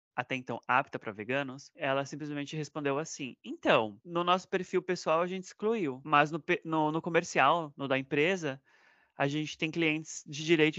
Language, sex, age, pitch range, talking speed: Portuguese, male, 20-39, 120-170 Hz, 170 wpm